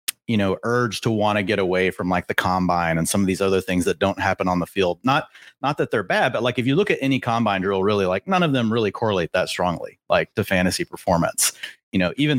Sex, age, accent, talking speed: male, 30-49, American, 260 wpm